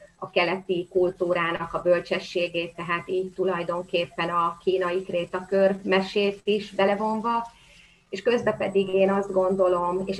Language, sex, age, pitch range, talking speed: Hungarian, female, 30-49, 175-195 Hz, 125 wpm